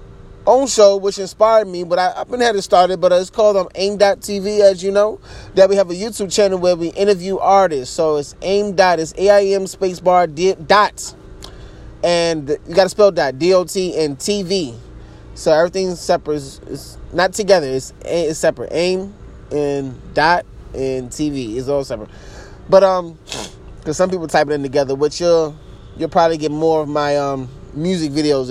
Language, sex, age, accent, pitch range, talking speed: English, male, 20-39, American, 150-195 Hz, 175 wpm